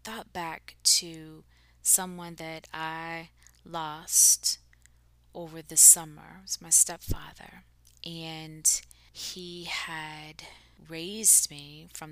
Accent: American